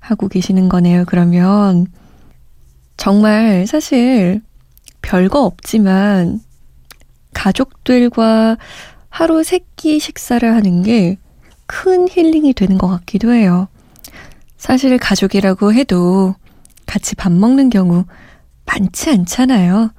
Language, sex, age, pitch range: Korean, female, 20-39, 185-245 Hz